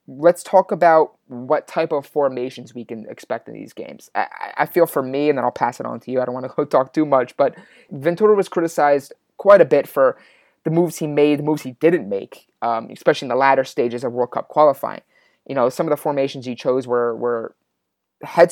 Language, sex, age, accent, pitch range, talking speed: English, male, 20-39, American, 125-150 Hz, 235 wpm